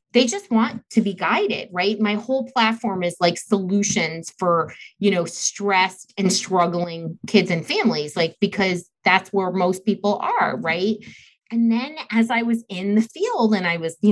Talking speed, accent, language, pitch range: 180 wpm, American, English, 175-230 Hz